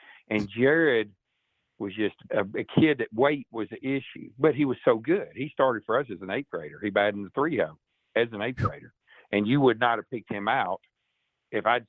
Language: English